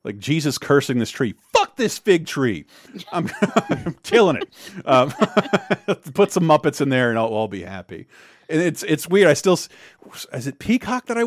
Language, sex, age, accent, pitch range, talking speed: English, male, 40-59, American, 105-160 Hz, 185 wpm